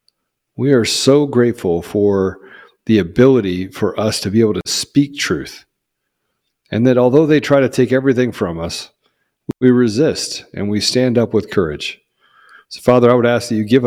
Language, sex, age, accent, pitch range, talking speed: English, male, 40-59, American, 110-130 Hz, 175 wpm